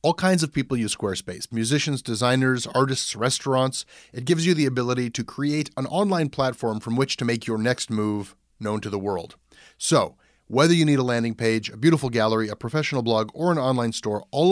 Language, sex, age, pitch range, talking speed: English, male, 30-49, 115-150 Hz, 205 wpm